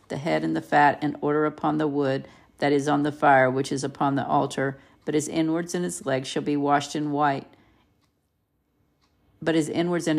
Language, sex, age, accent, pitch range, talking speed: English, female, 50-69, American, 140-150 Hz, 205 wpm